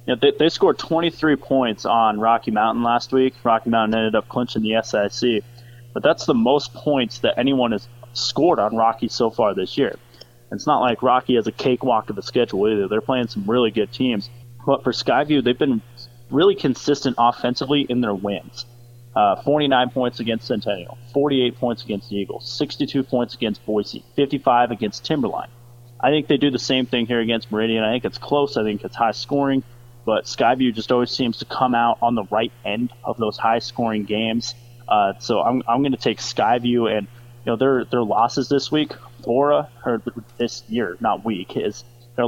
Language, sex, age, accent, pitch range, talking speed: English, male, 30-49, American, 115-130 Hz, 195 wpm